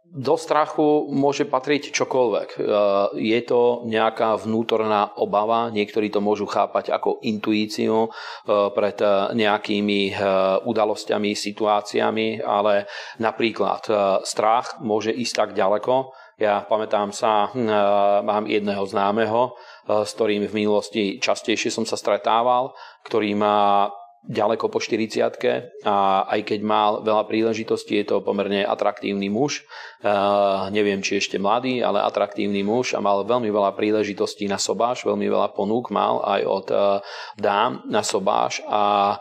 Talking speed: 125 wpm